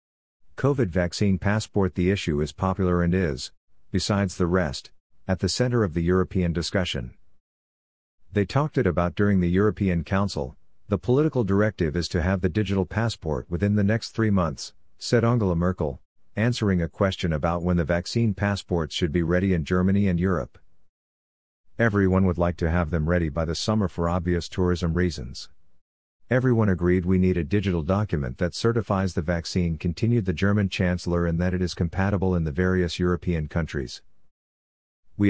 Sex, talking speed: male, 170 wpm